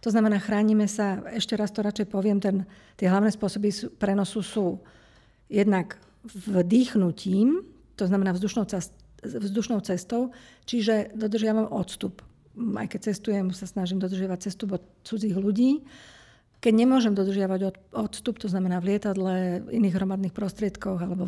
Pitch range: 190-220 Hz